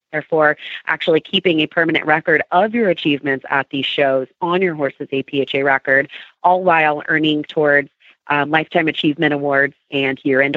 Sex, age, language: female, 30-49, English